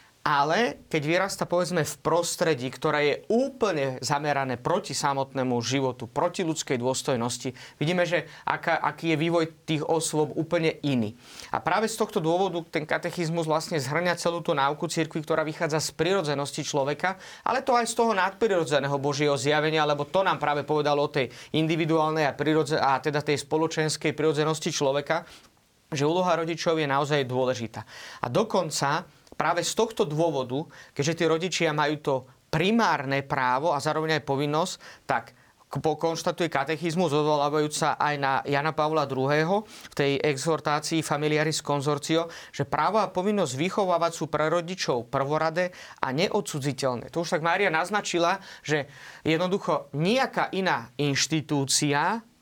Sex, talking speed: male, 145 wpm